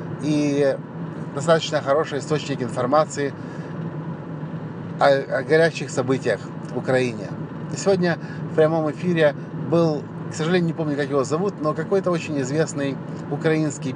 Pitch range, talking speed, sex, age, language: 140-165 Hz, 120 wpm, male, 30-49, English